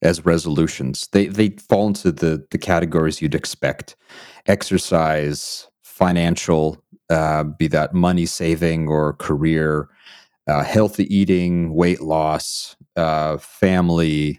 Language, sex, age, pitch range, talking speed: English, male, 30-49, 75-90 Hz, 115 wpm